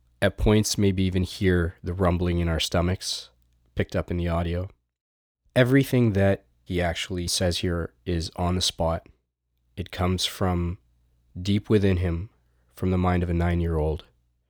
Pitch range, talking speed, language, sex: 65-95 Hz, 155 wpm, English, male